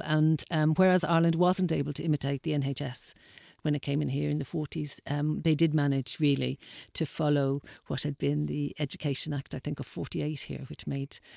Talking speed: 200 wpm